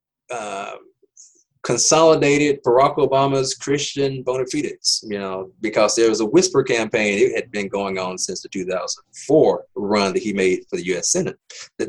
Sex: male